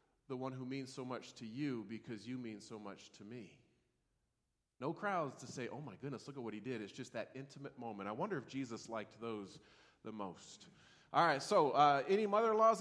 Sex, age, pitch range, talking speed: male, 30-49, 135-190 Hz, 215 wpm